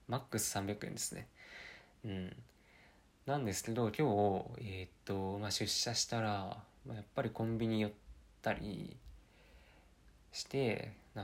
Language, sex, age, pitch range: Japanese, male, 20-39, 95-120 Hz